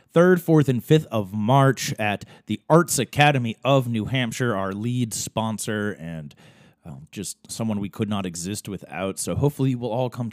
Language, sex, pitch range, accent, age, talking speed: English, male, 105-145 Hz, American, 30-49, 180 wpm